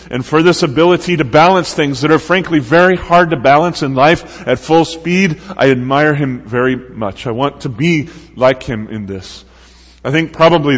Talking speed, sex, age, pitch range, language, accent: 195 wpm, male, 30-49, 125-160 Hz, English, American